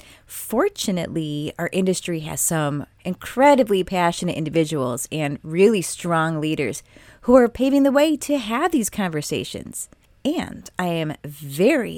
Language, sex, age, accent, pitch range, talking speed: English, female, 30-49, American, 160-235 Hz, 125 wpm